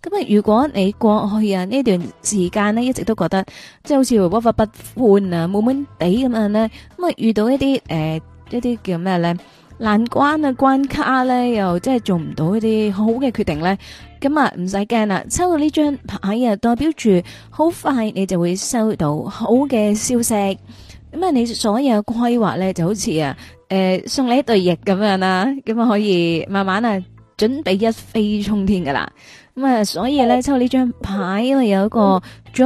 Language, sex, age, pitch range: Chinese, female, 20-39, 190-260 Hz